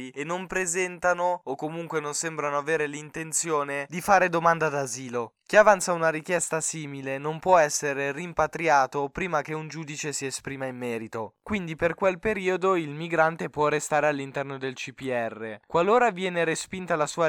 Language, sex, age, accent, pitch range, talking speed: Italian, male, 10-29, native, 135-160 Hz, 160 wpm